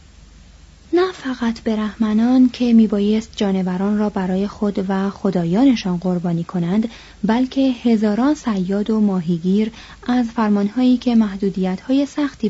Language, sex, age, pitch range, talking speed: Persian, female, 30-49, 185-245 Hz, 115 wpm